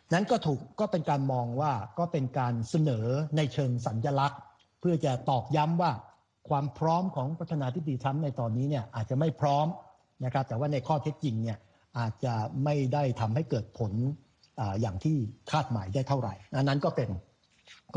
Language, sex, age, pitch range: Thai, male, 60-79, 115-150 Hz